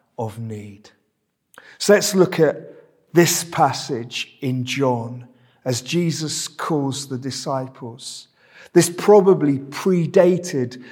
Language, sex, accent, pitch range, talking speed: English, male, British, 130-190 Hz, 90 wpm